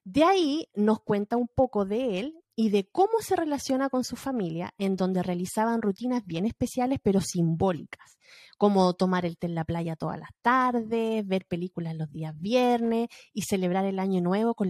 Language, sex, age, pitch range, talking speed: Spanish, female, 30-49, 190-300 Hz, 185 wpm